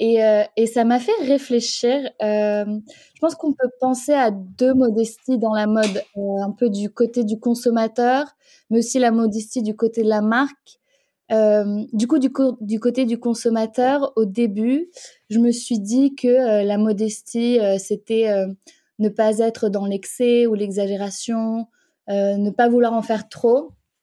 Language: French